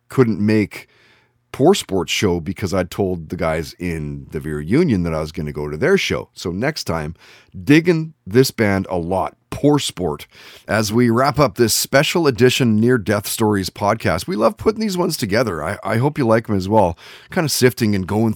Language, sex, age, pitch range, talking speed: English, male, 30-49, 95-125 Hz, 205 wpm